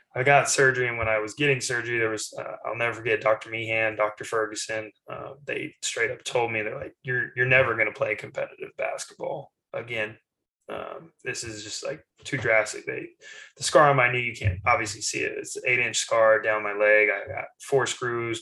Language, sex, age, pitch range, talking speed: English, male, 20-39, 105-135 Hz, 215 wpm